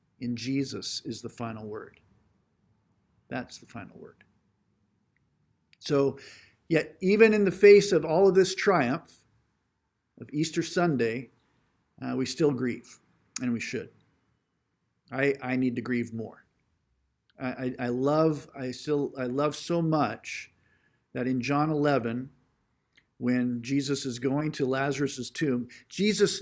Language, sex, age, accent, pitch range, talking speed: English, male, 50-69, American, 120-155 Hz, 135 wpm